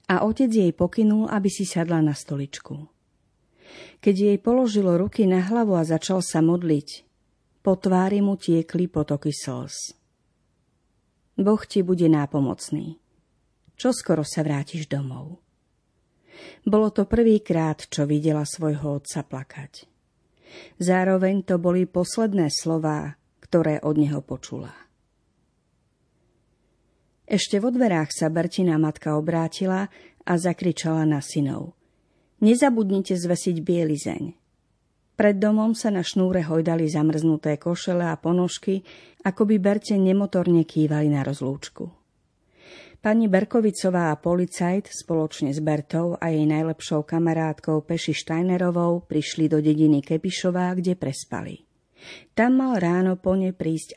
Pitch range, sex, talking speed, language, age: 155-190 Hz, female, 120 wpm, Slovak, 40-59